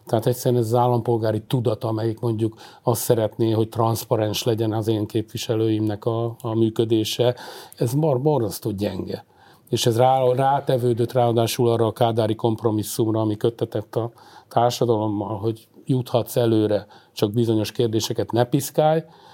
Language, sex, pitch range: Hungarian, male, 110-125 Hz